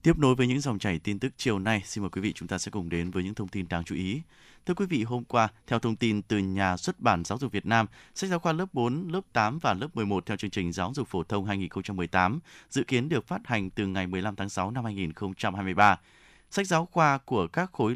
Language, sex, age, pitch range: Vietnamese, male, 20-39, 100-130 Hz